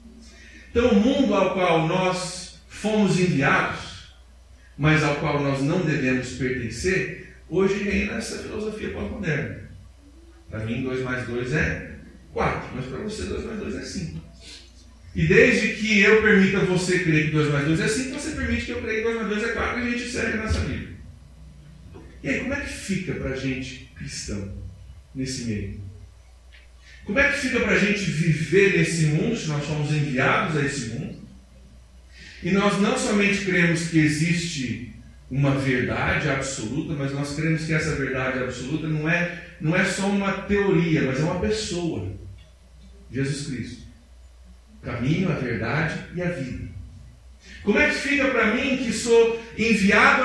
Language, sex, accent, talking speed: Portuguese, male, Brazilian, 165 wpm